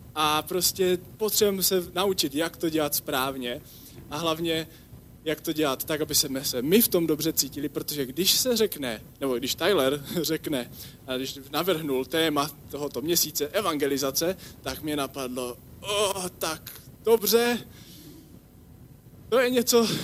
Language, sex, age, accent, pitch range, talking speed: English, male, 20-39, Czech, 135-180 Hz, 135 wpm